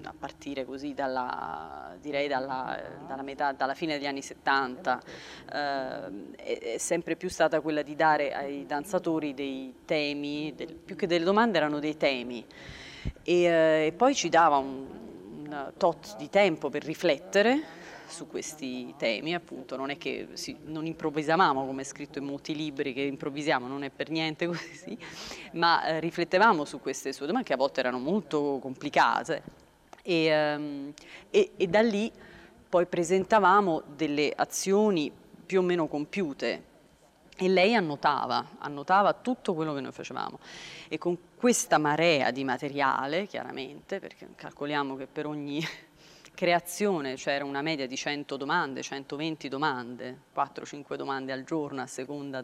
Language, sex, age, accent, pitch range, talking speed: Italian, female, 30-49, native, 140-175 Hz, 150 wpm